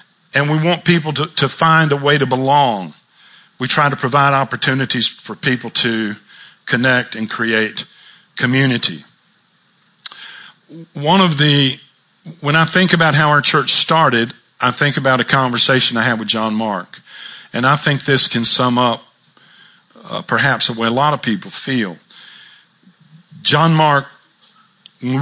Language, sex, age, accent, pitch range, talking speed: English, male, 50-69, American, 115-155 Hz, 150 wpm